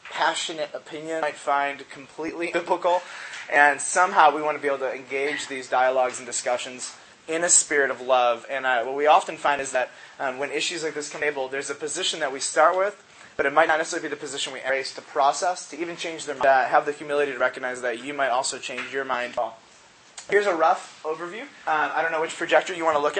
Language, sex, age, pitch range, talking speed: English, male, 20-39, 135-165 Hz, 235 wpm